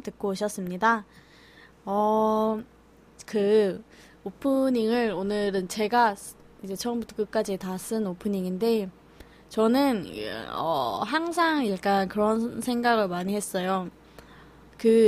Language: Korean